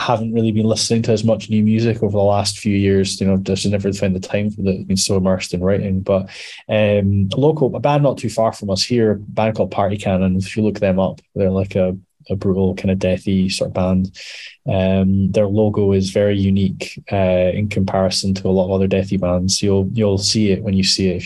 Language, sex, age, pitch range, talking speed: English, male, 10-29, 95-110 Hz, 245 wpm